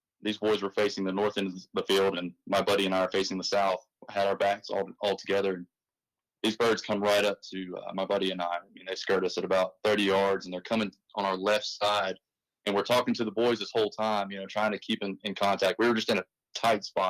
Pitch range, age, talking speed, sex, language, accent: 95-110 Hz, 20-39, 275 wpm, male, English, American